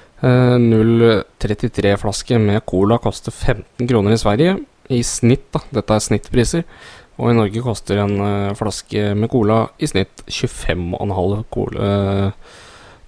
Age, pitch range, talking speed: 20-39, 105-125 Hz, 125 wpm